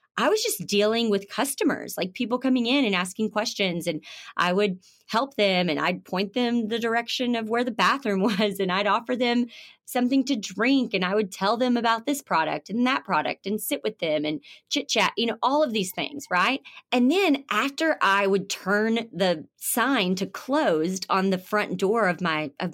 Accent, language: American, English